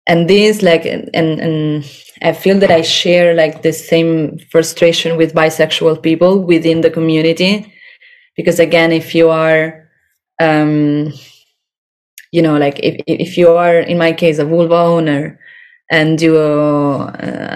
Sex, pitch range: female, 160-180 Hz